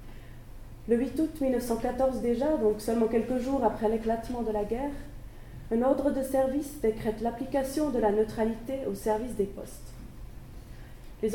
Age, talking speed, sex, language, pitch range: 30-49, 150 wpm, female, French, 210-255 Hz